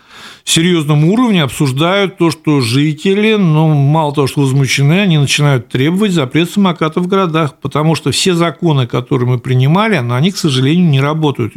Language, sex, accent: Russian, male, native